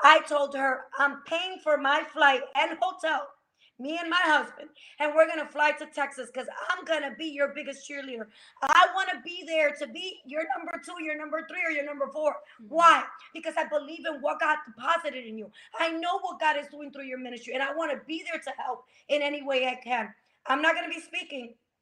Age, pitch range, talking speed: 30-49, 280-335 Hz, 225 wpm